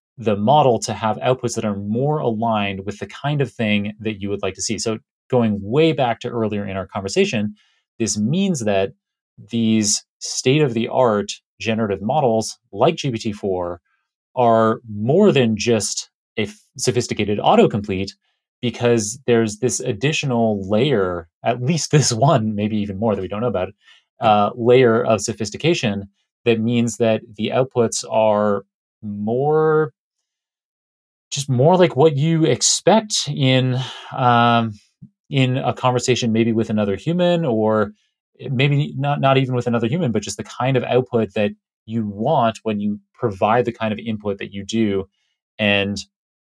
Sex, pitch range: male, 105-130 Hz